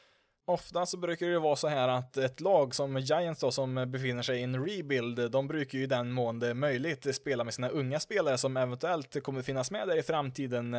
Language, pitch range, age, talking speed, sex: Swedish, 120-145 Hz, 20-39, 215 wpm, male